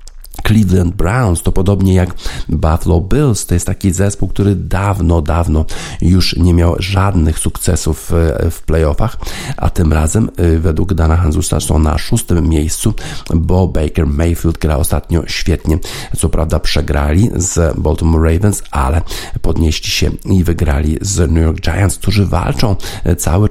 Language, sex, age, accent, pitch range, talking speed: Polish, male, 50-69, native, 80-95 Hz, 140 wpm